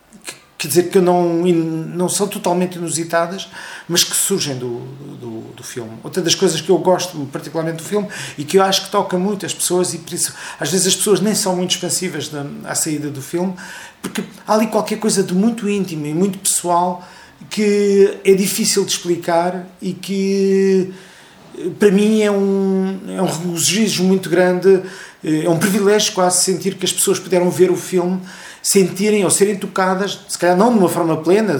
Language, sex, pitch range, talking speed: Portuguese, male, 170-200 Hz, 185 wpm